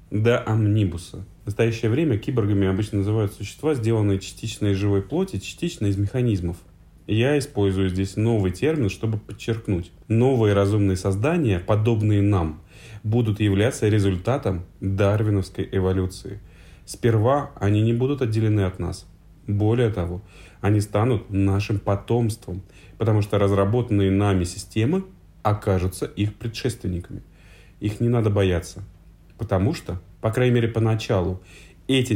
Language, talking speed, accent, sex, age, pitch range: Russian, 125 wpm, native, male, 30-49, 95-115 Hz